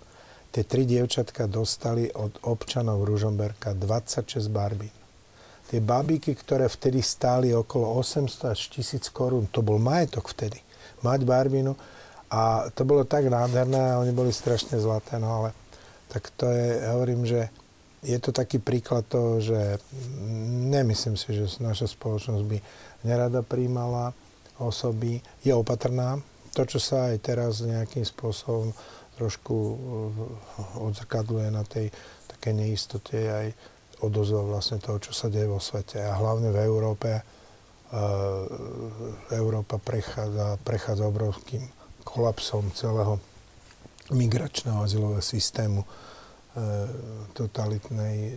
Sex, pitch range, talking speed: male, 105-120 Hz, 120 wpm